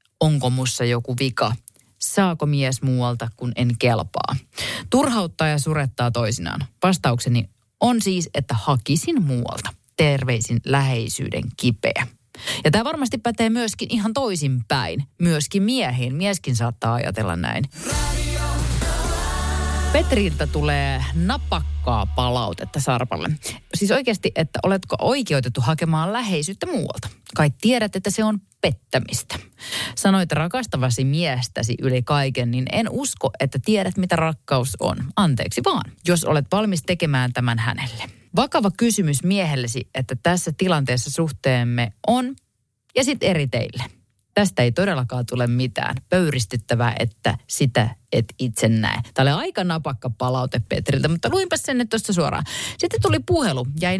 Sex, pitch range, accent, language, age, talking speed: female, 120-185 Hz, native, Finnish, 30-49, 125 wpm